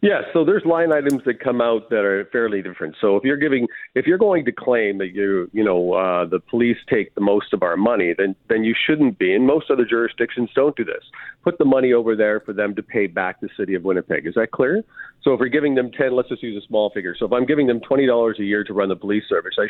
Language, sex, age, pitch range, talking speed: English, male, 50-69, 100-125 Hz, 275 wpm